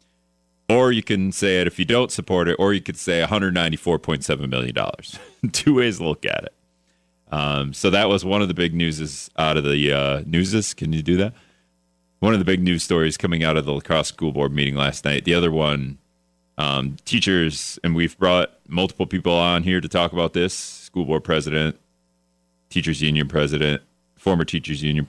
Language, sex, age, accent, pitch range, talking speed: English, male, 30-49, American, 65-90 Hz, 195 wpm